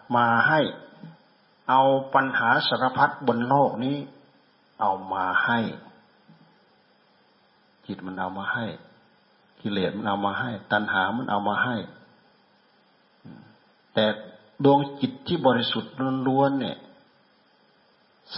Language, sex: Thai, male